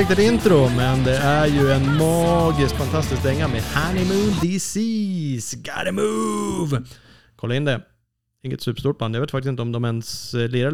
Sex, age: male, 30-49